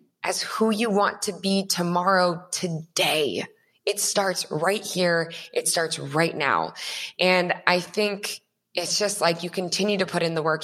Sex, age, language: female, 20-39, English